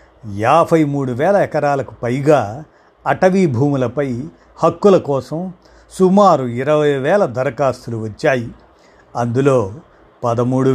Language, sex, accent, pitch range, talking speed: Telugu, male, native, 125-165 Hz, 90 wpm